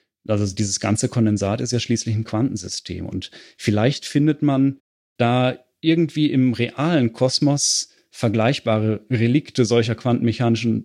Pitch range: 110-130 Hz